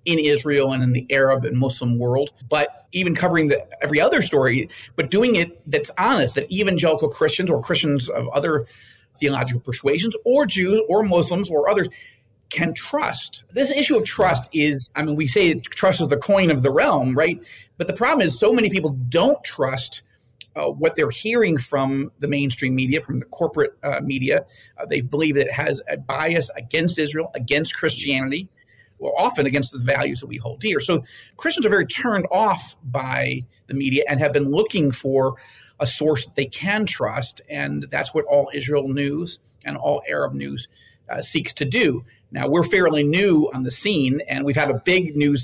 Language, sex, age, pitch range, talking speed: English, male, 40-59, 135-170 Hz, 190 wpm